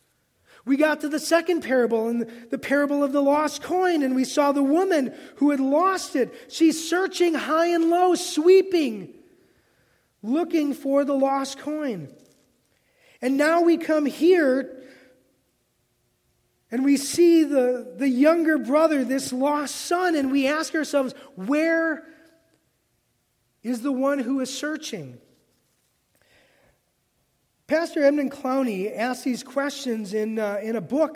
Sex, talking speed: male, 135 wpm